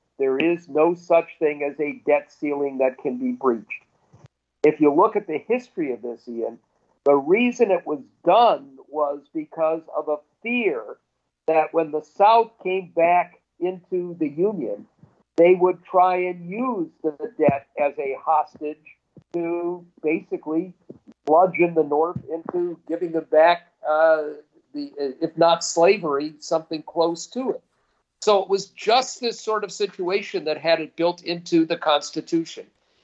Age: 50-69